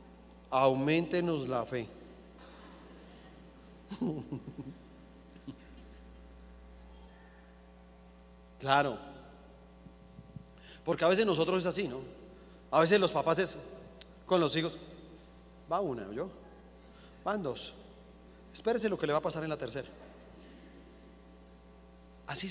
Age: 40-59